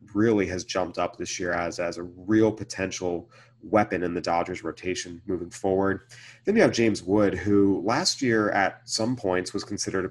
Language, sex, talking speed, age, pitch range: English, male, 190 wpm, 30-49, 90-120 Hz